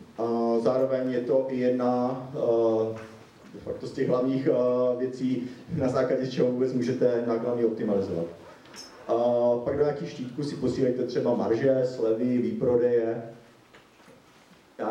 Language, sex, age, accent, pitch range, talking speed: Czech, male, 40-59, native, 115-130 Hz, 135 wpm